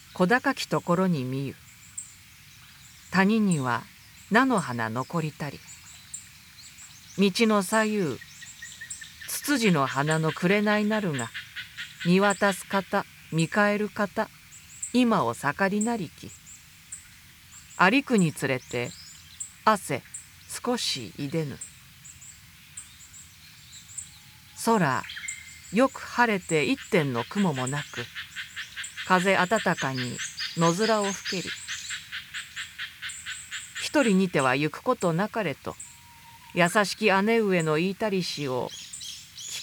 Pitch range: 140-220 Hz